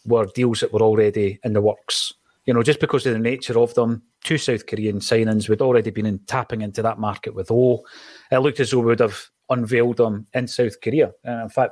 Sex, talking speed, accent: male, 235 wpm, British